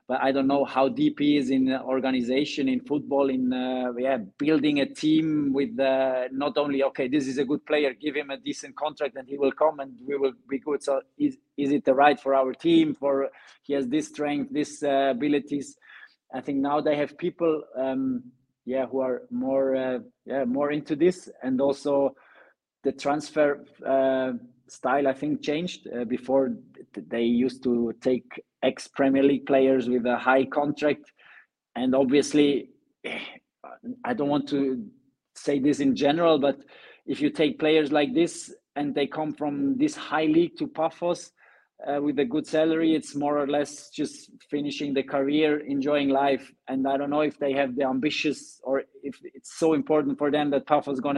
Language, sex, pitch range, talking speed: English, male, 130-150 Hz, 185 wpm